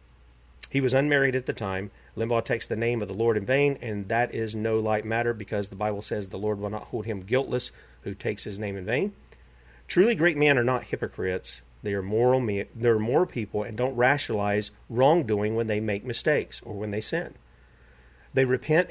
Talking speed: 205 wpm